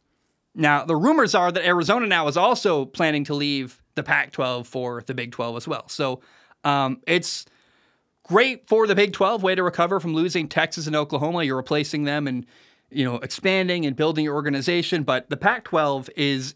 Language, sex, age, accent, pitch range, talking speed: English, male, 30-49, American, 140-185 Hz, 185 wpm